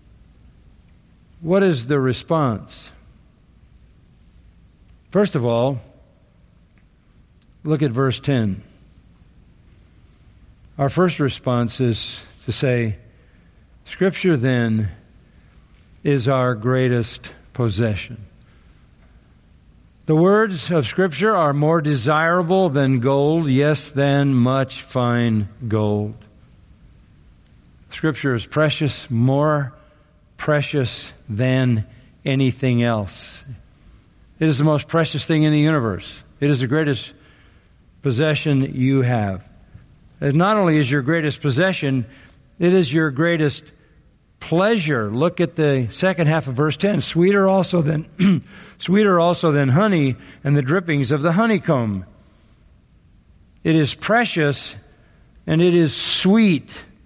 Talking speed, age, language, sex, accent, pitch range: 105 wpm, 50-69, English, male, American, 115-160 Hz